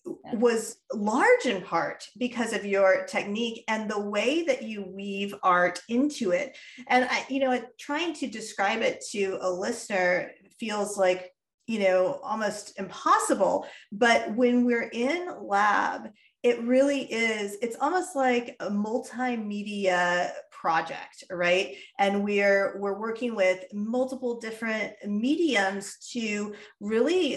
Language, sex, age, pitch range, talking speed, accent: English, female, 30-49, 195-255 Hz, 130 wpm, American